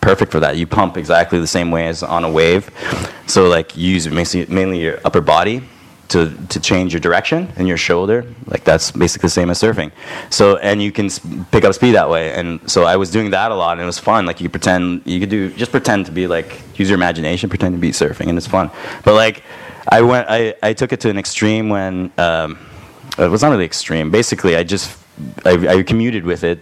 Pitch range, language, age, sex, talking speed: 85-100 Hz, English, 20-39, male, 235 wpm